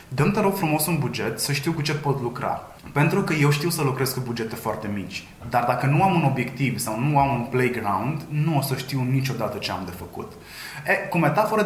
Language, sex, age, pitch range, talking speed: Romanian, male, 20-39, 125-155 Hz, 225 wpm